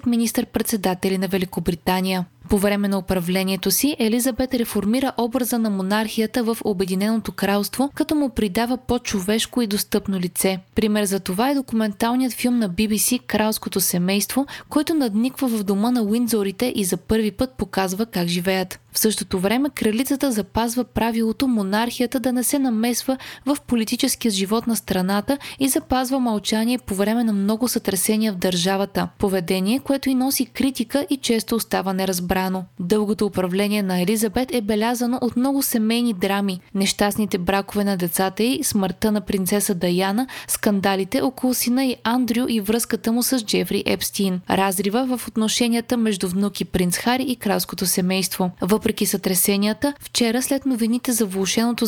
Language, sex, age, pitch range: Bulgarian, female, 20-39, 195-245 Hz